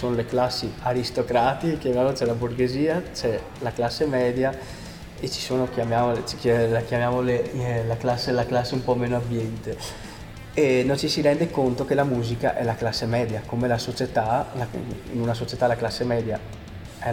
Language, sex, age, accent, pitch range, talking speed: Italian, male, 20-39, native, 115-135 Hz, 175 wpm